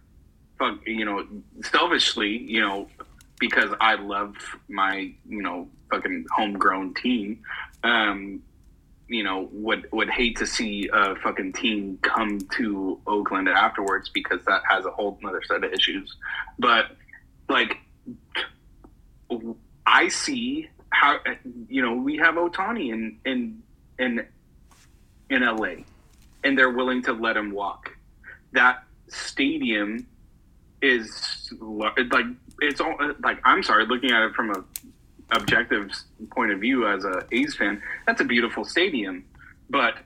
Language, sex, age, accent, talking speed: English, male, 20-39, American, 130 wpm